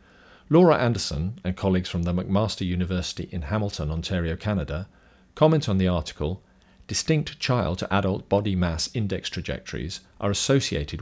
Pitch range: 85-105 Hz